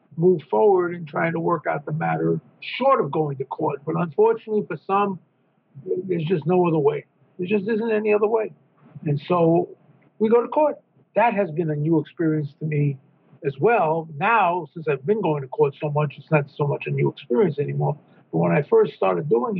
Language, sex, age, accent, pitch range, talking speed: English, male, 50-69, American, 150-205 Hz, 210 wpm